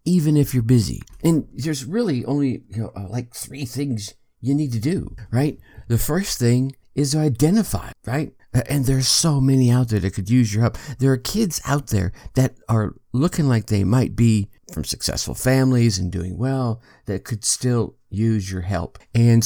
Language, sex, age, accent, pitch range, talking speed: English, male, 50-69, American, 100-135 Hz, 180 wpm